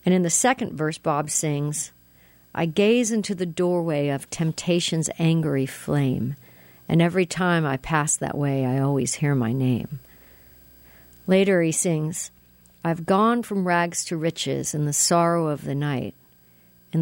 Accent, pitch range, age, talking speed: American, 130-180 Hz, 50-69, 155 wpm